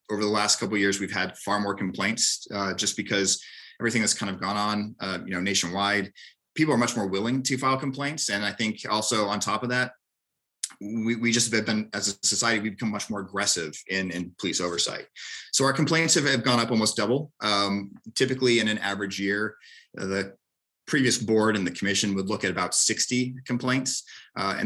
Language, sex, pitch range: English, male, 100-115 Hz